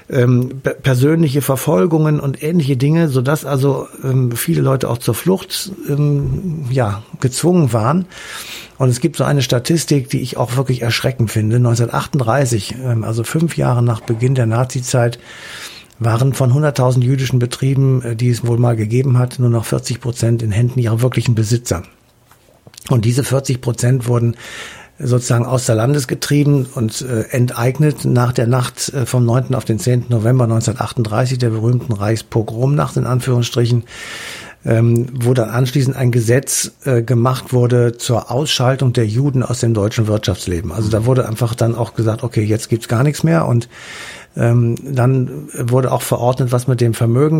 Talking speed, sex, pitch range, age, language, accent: 155 wpm, male, 120-135 Hz, 60-79, German, German